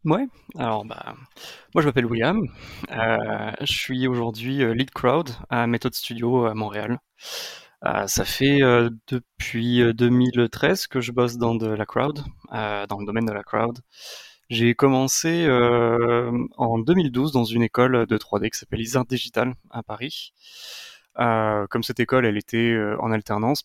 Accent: French